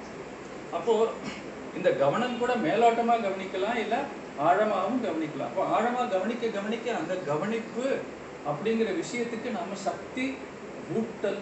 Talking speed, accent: 105 wpm, native